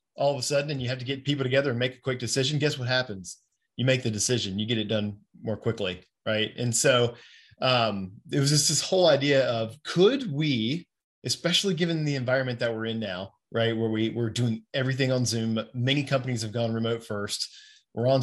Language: English